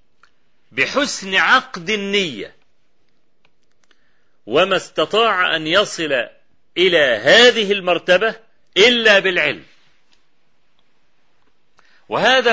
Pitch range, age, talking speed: 160-220 Hz, 40-59, 60 wpm